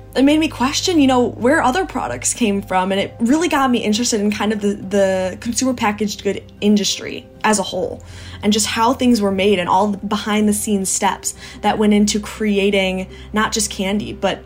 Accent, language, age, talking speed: American, English, 20-39, 210 wpm